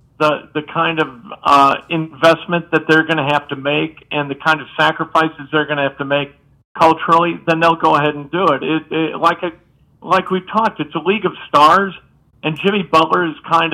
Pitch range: 150-175 Hz